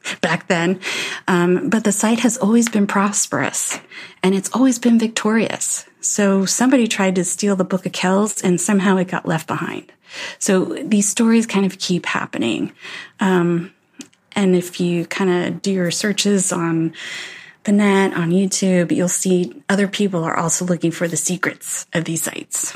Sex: female